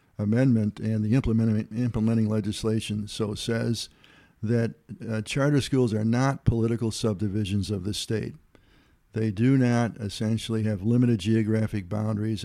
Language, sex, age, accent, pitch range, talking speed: English, male, 60-79, American, 105-125 Hz, 130 wpm